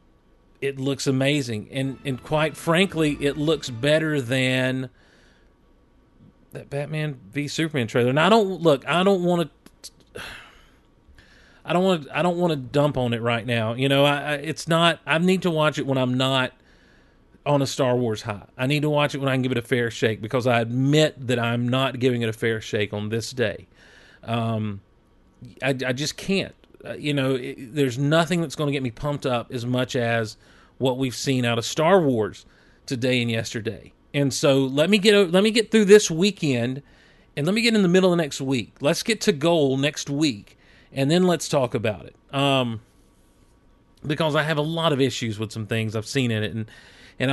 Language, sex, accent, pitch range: English, male, American, 120-155 Hz